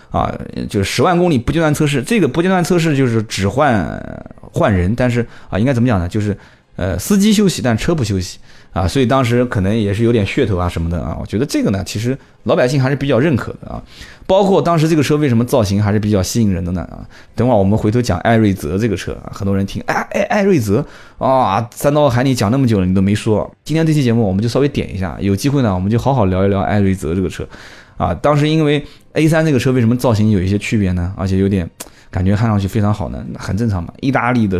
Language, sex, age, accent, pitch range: Chinese, male, 20-39, native, 100-140 Hz